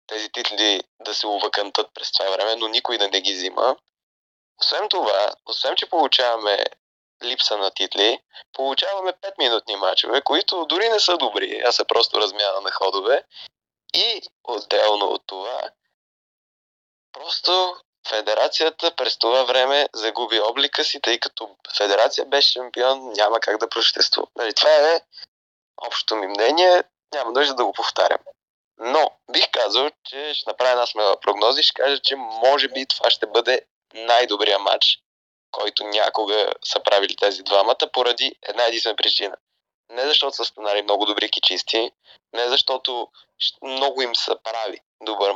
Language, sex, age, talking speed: Bulgarian, male, 20-39, 145 wpm